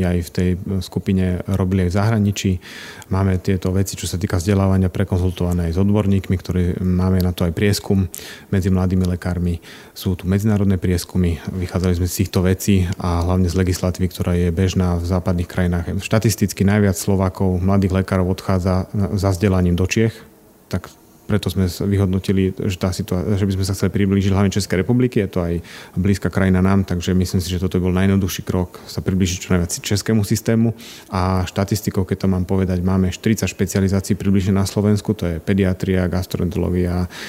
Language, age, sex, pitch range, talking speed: Slovak, 30-49, male, 90-100 Hz, 175 wpm